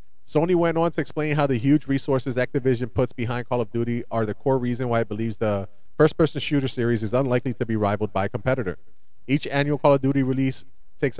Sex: male